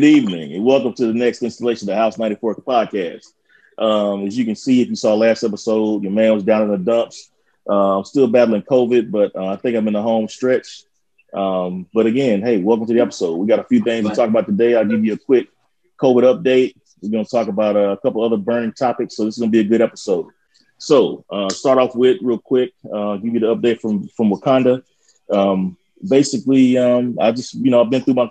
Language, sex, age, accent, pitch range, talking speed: English, male, 30-49, American, 105-125 Hz, 230 wpm